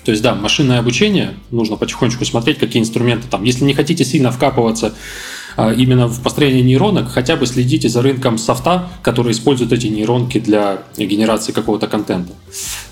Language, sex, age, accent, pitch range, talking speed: Russian, male, 20-39, native, 105-125 Hz, 160 wpm